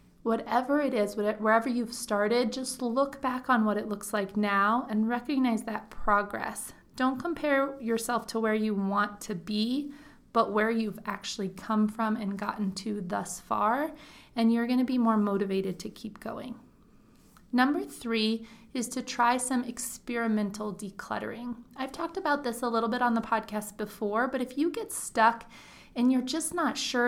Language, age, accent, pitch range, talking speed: English, 30-49, American, 215-255 Hz, 175 wpm